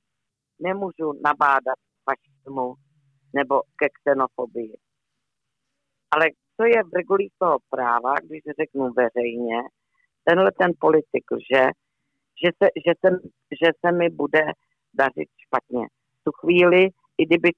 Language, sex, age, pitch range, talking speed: Czech, female, 50-69, 130-170 Hz, 125 wpm